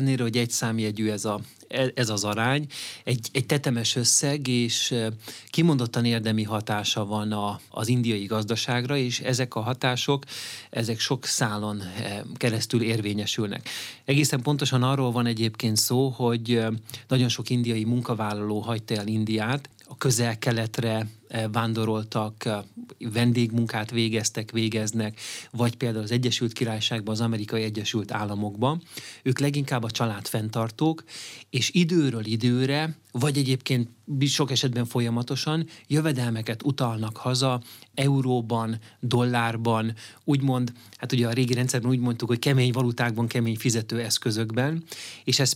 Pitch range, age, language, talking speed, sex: 115-130 Hz, 30-49, Hungarian, 120 wpm, male